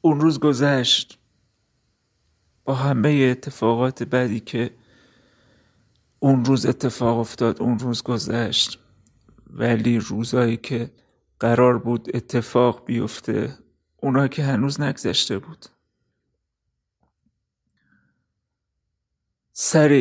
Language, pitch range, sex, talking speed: Persian, 120-135 Hz, male, 85 wpm